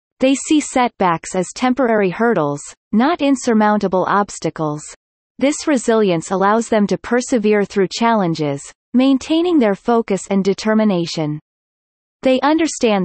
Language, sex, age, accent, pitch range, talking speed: English, female, 30-49, American, 180-245 Hz, 110 wpm